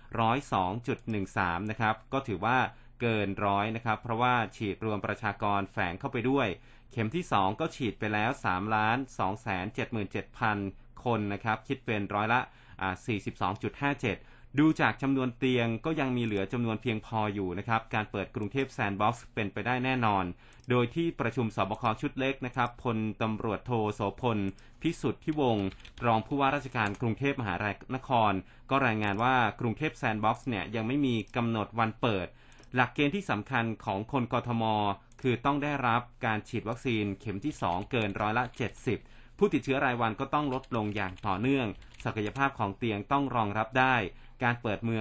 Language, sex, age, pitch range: Thai, male, 20-39, 105-130 Hz